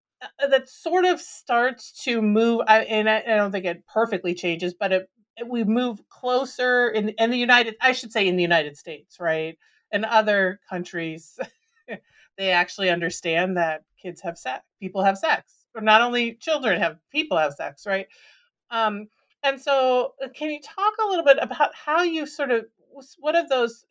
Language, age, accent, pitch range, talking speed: English, 40-59, American, 175-245 Hz, 170 wpm